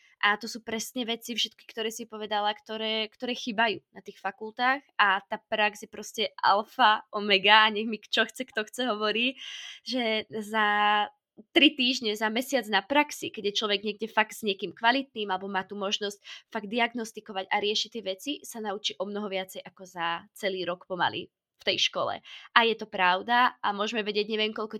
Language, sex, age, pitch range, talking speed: Slovak, female, 20-39, 200-235 Hz, 190 wpm